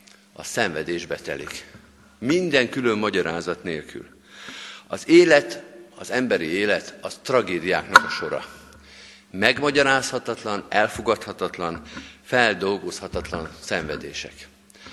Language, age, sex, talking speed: Hungarian, 50-69, male, 80 wpm